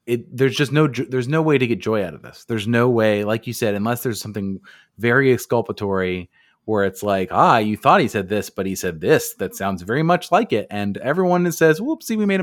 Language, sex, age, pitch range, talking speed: English, male, 30-49, 105-130 Hz, 230 wpm